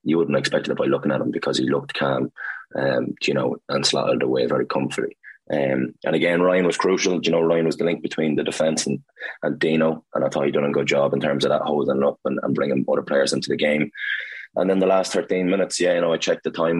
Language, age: English, 20-39